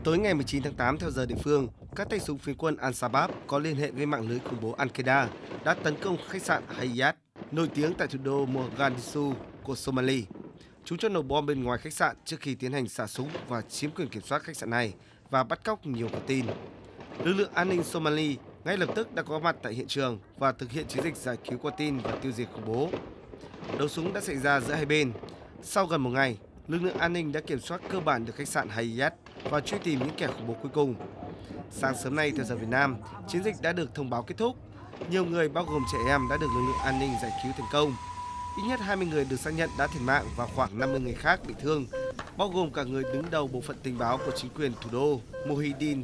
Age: 20-39